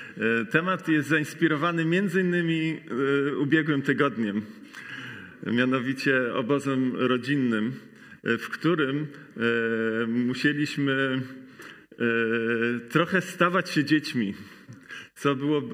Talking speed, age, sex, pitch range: 70 wpm, 40-59, male, 125-160 Hz